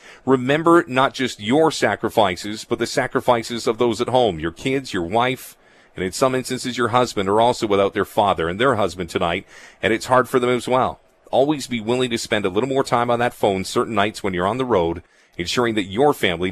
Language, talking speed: English, 220 wpm